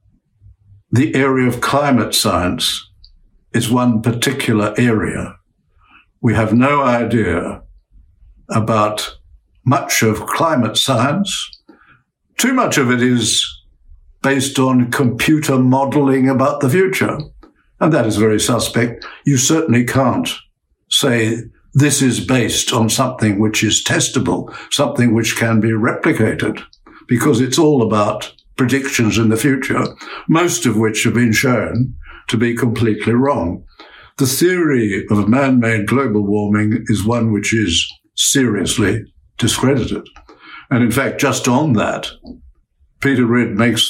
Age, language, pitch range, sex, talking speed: 60-79, English, 105-130 Hz, male, 125 wpm